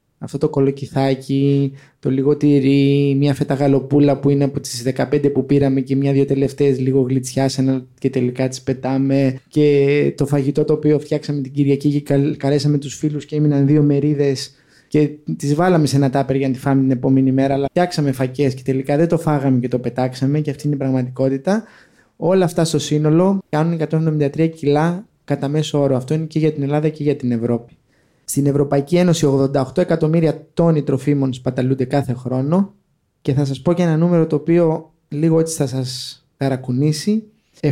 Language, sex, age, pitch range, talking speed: Greek, male, 20-39, 135-155 Hz, 180 wpm